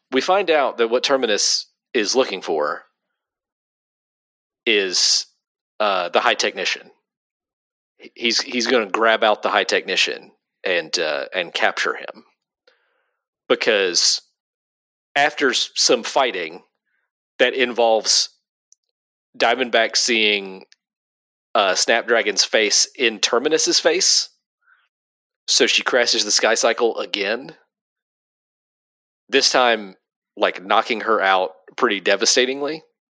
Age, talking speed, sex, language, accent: 40-59, 105 wpm, male, English, American